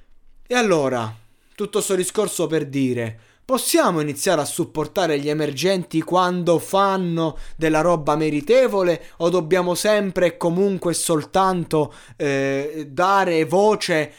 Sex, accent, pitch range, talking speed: male, native, 135-180 Hz, 115 wpm